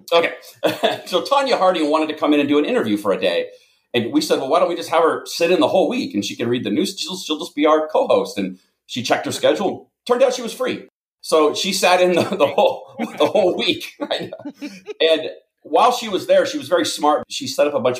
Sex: male